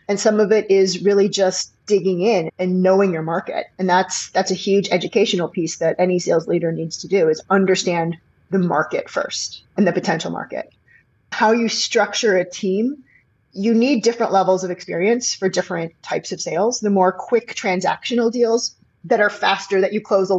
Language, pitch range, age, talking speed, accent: English, 180-210 Hz, 30-49, 190 wpm, American